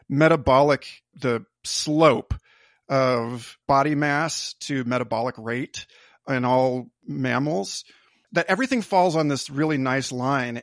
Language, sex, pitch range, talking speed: English, male, 130-160 Hz, 115 wpm